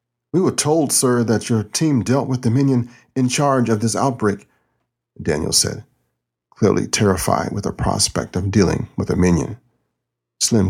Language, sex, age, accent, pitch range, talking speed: English, male, 40-59, American, 95-120 Hz, 165 wpm